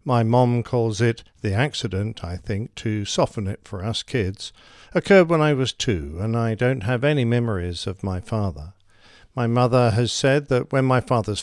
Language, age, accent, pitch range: English, 50-69, British, 105-130 Hz